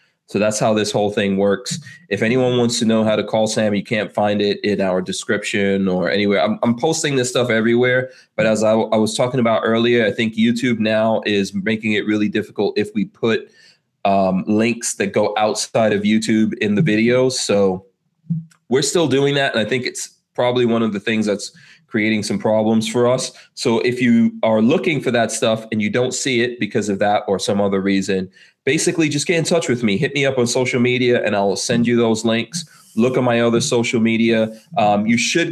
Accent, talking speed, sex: American, 220 wpm, male